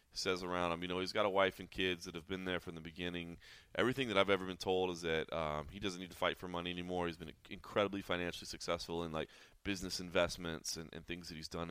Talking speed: 255 wpm